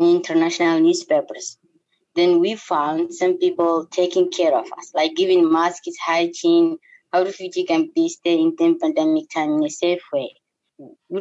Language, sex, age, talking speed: English, female, 20-39, 150 wpm